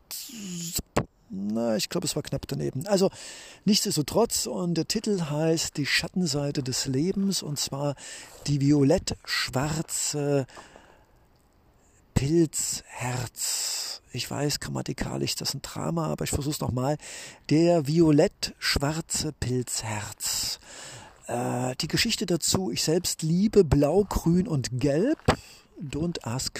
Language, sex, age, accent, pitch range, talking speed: German, male, 50-69, German, 145-195 Hz, 110 wpm